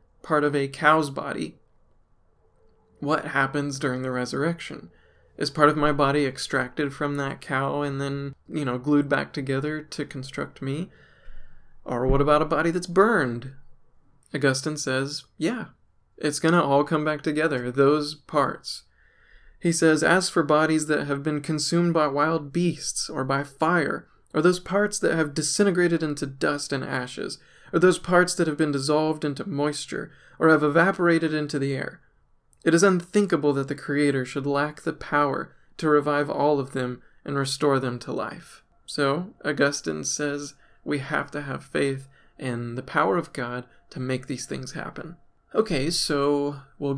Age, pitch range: 20-39, 135-155 Hz